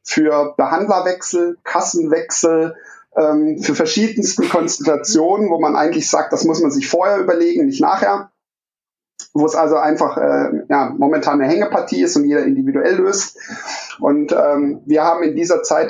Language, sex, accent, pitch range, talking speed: German, male, German, 155-215 Hz, 150 wpm